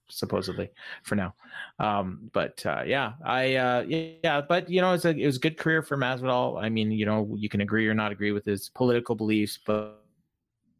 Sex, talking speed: male, 210 wpm